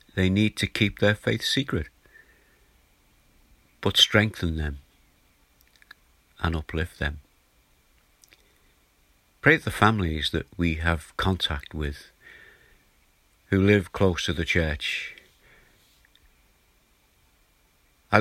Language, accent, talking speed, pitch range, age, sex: English, British, 95 wpm, 80-100 Hz, 60-79, male